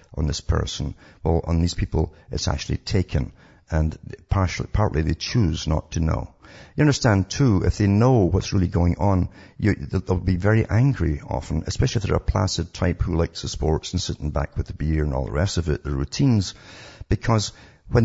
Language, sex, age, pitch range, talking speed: English, male, 60-79, 85-105 Hz, 200 wpm